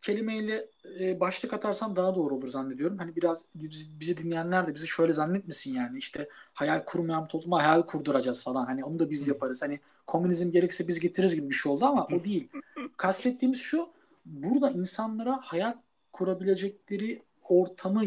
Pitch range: 160-205 Hz